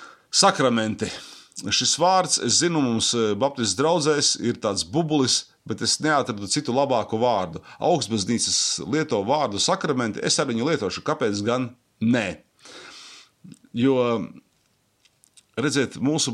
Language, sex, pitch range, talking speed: English, male, 110-160 Hz, 110 wpm